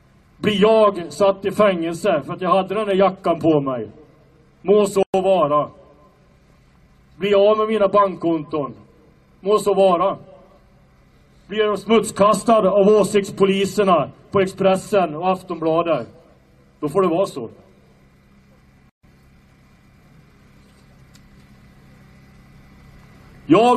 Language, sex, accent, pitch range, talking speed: Swedish, male, Norwegian, 155-210 Hz, 100 wpm